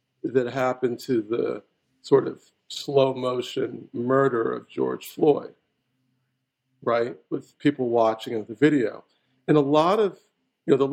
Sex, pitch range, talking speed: male, 120-155 Hz, 145 wpm